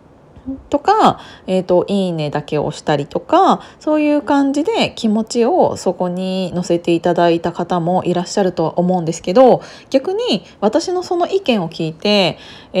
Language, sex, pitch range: Japanese, female, 175-270 Hz